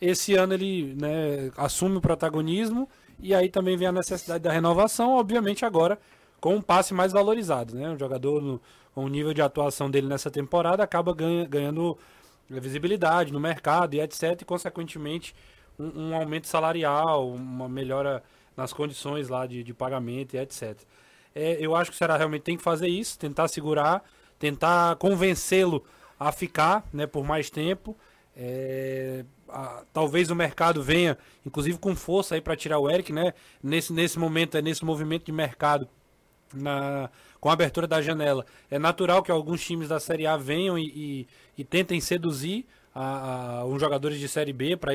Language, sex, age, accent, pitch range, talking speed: Portuguese, male, 20-39, Brazilian, 140-170 Hz, 160 wpm